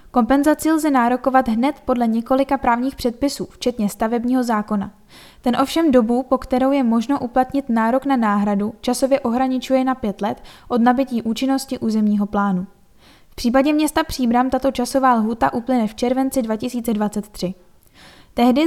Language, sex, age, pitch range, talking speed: Czech, female, 10-29, 225-265 Hz, 140 wpm